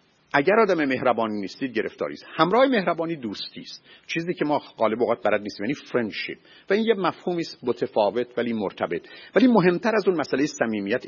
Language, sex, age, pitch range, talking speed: Persian, male, 50-69, 125-190 Hz, 180 wpm